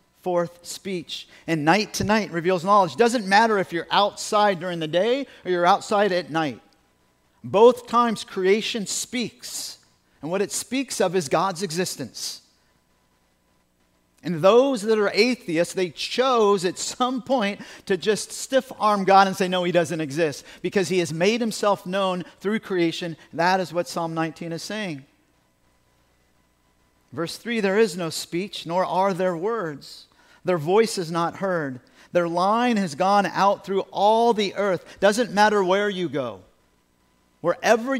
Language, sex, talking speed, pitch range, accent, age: English, male, 155 wpm, 160-210 Hz, American, 50-69